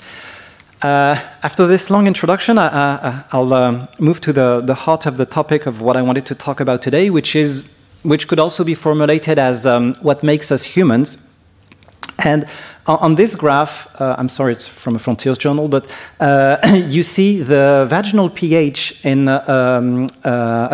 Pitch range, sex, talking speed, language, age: 125-155 Hz, male, 180 wpm, French, 40-59